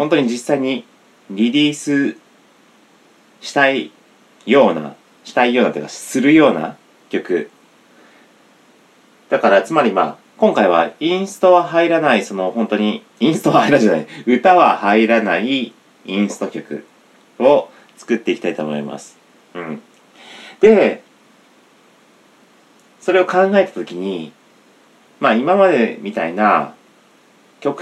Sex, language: male, Japanese